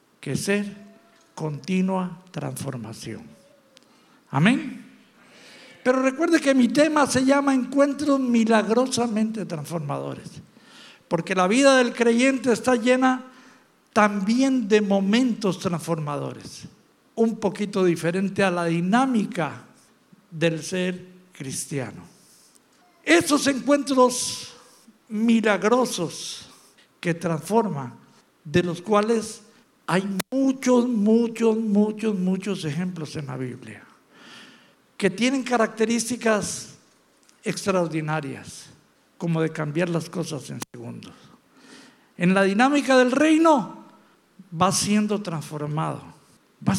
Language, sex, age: English, male, 60-79